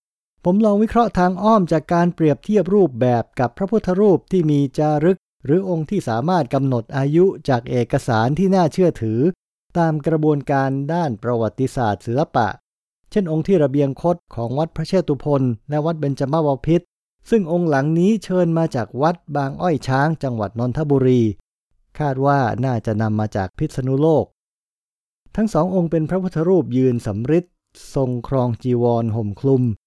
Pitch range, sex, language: 120-170 Hz, male, English